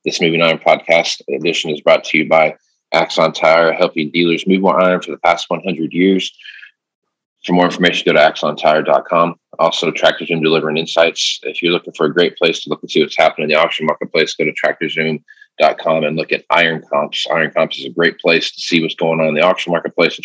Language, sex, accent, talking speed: English, male, American, 215 wpm